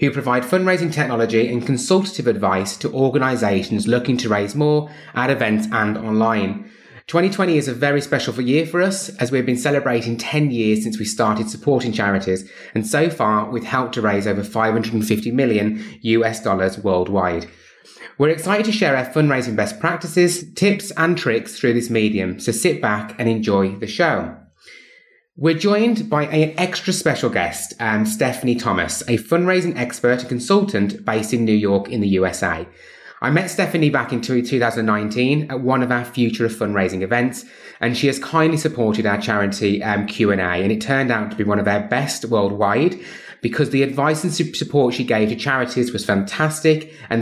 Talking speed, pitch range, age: 175 wpm, 110-150 Hz, 20-39